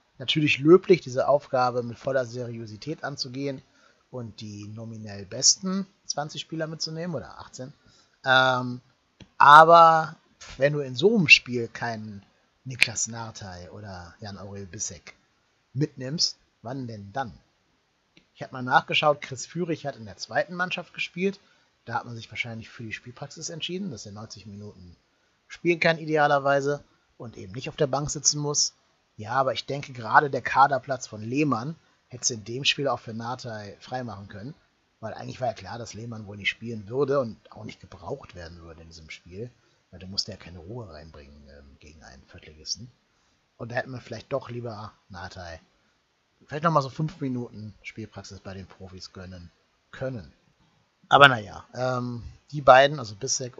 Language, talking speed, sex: German, 165 wpm, male